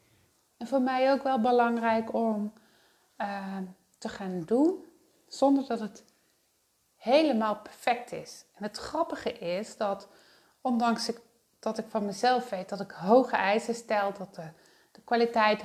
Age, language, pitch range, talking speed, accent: 30-49, Dutch, 190-235 Hz, 140 wpm, Dutch